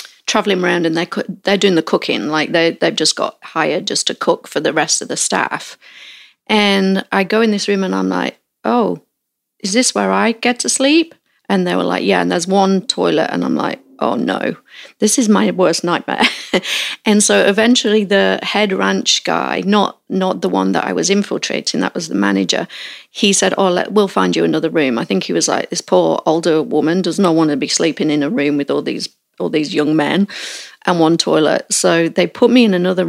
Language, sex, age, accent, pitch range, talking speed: English, female, 40-59, British, 155-205 Hz, 220 wpm